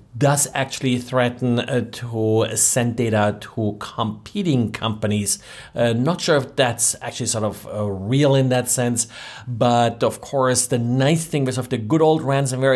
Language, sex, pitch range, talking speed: English, male, 110-135 Hz, 160 wpm